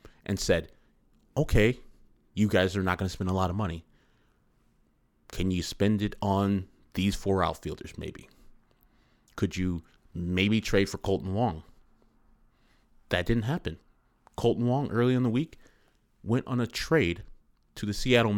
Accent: American